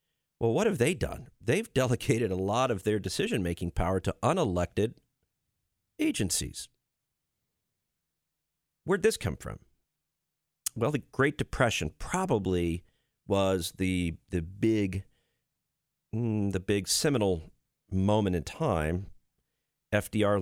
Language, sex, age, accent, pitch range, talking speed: English, male, 40-59, American, 95-120 Hz, 110 wpm